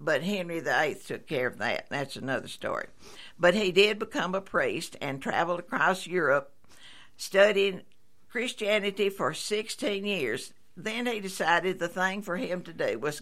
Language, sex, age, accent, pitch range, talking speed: English, female, 60-79, American, 165-205 Hz, 160 wpm